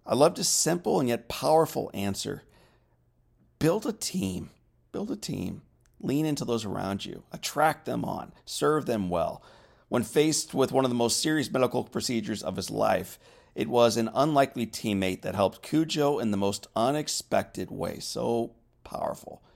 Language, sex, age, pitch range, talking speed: English, male, 40-59, 105-140 Hz, 165 wpm